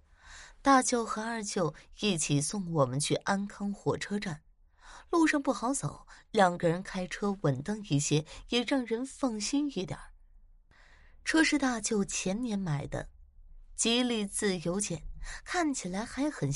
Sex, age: female, 20-39